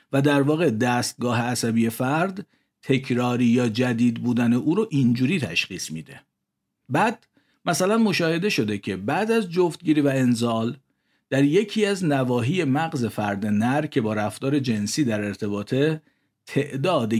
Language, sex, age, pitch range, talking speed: Persian, male, 50-69, 110-155 Hz, 135 wpm